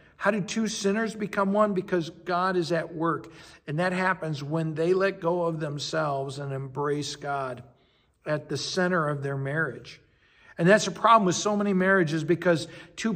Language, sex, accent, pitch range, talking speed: English, male, American, 145-185 Hz, 180 wpm